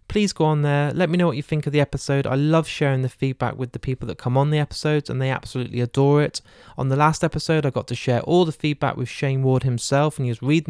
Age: 20-39